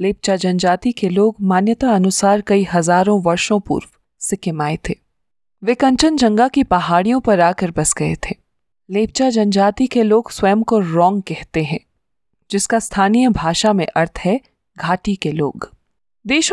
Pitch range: 175-225 Hz